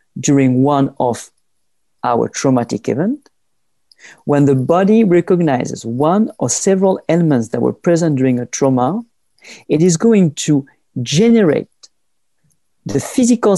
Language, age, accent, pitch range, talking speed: English, 50-69, French, 140-205 Hz, 120 wpm